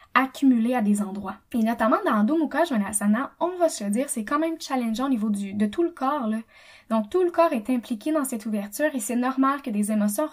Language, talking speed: French, 235 wpm